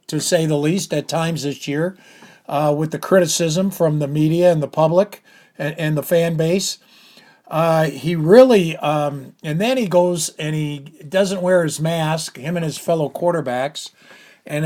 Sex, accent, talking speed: male, American, 175 wpm